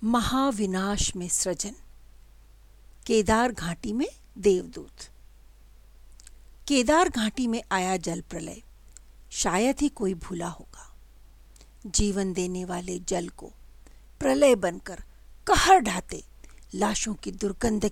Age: 50-69